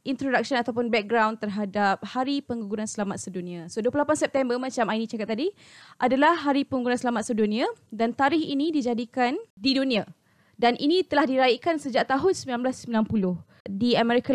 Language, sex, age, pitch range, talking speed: Malay, female, 20-39, 220-270 Hz, 145 wpm